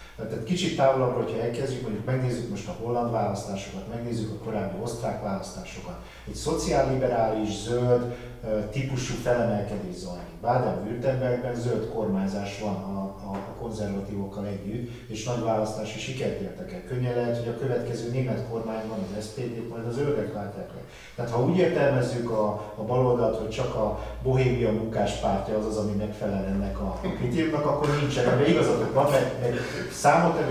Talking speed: 160 wpm